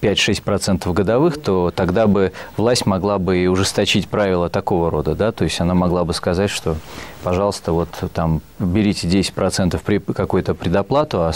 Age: 20-39